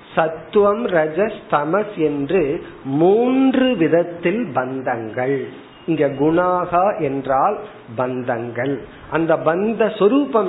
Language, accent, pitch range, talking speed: Tamil, native, 145-185 Hz, 70 wpm